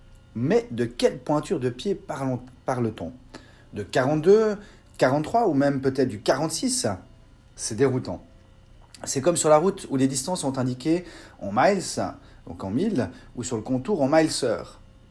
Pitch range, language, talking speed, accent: 110-165 Hz, French, 155 wpm, French